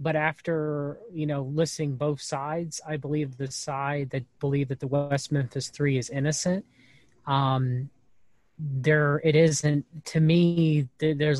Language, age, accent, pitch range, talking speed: English, 30-49, American, 130-155 Hz, 140 wpm